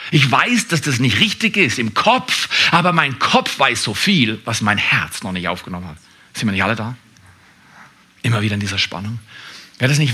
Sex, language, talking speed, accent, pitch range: male, German, 215 wpm, German, 115-175 Hz